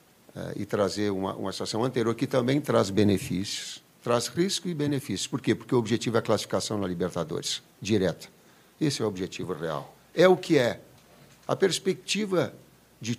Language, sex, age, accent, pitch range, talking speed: Portuguese, male, 50-69, Brazilian, 110-165 Hz, 170 wpm